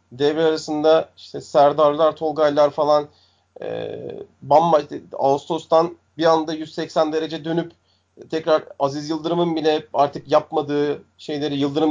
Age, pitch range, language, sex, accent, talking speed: 40-59, 120-155 Hz, Turkish, male, native, 115 wpm